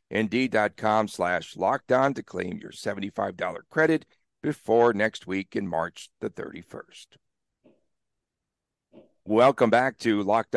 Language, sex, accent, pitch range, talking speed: English, male, American, 100-145 Hz, 95 wpm